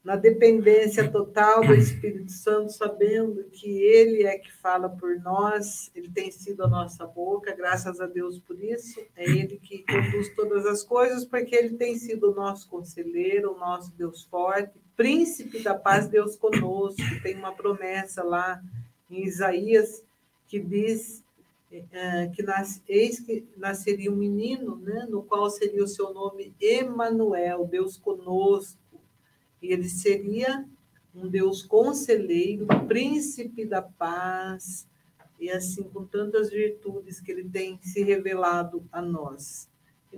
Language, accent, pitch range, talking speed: Portuguese, Brazilian, 185-220 Hz, 140 wpm